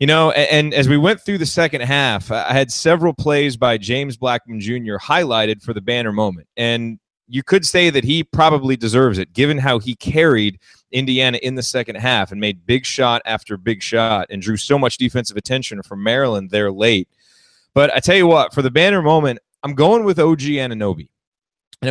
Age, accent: 30-49, American